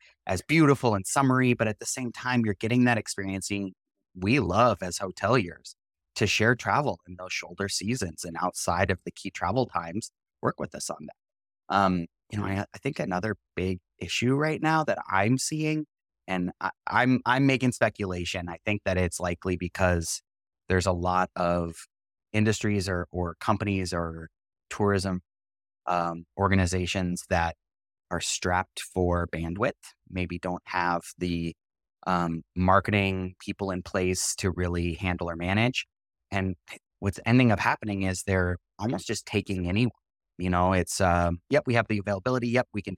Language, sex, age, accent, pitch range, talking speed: English, male, 30-49, American, 90-110 Hz, 160 wpm